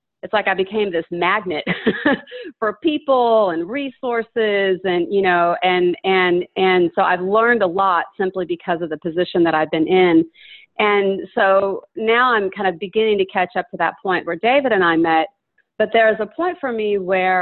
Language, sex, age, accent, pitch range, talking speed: English, female, 40-59, American, 175-215 Hz, 190 wpm